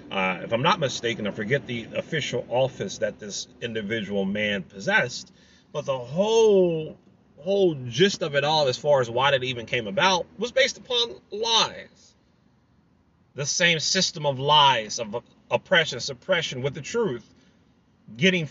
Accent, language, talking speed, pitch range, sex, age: American, English, 150 wpm, 120-190 Hz, male, 30-49